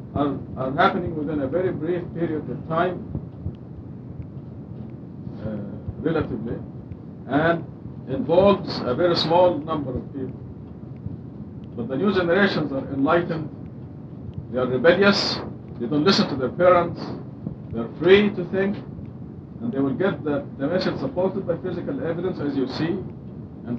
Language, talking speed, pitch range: English, 135 wpm, 130-175 Hz